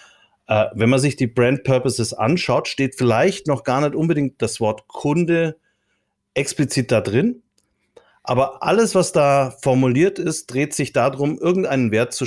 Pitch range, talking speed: 110-140 Hz, 150 wpm